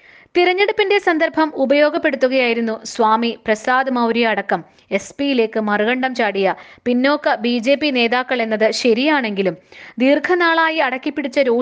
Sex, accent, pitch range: female, native, 225-290 Hz